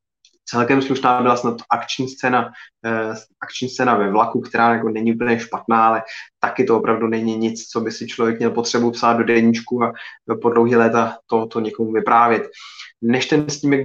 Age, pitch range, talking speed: 20-39, 115-130 Hz, 165 wpm